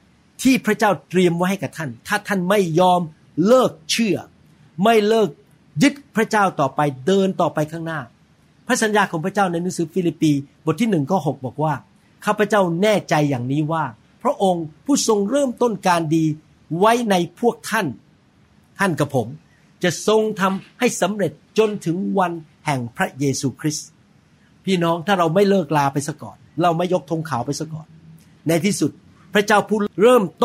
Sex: male